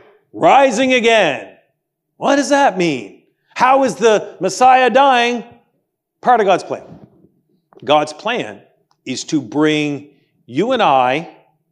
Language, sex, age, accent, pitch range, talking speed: English, male, 40-59, American, 170-235 Hz, 120 wpm